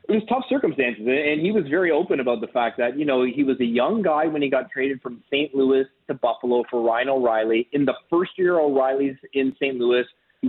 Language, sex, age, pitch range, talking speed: English, male, 30-49, 130-170 Hz, 235 wpm